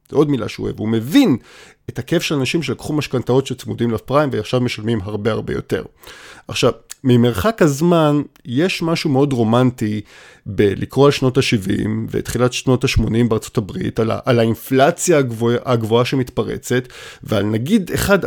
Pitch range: 120-175 Hz